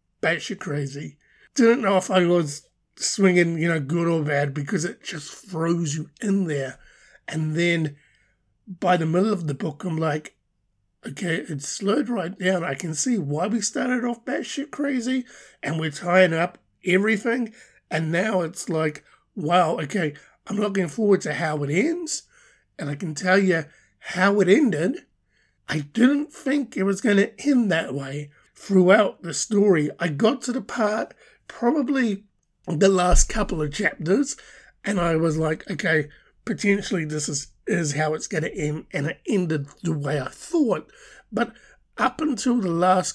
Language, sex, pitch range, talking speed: English, male, 155-210 Hz, 165 wpm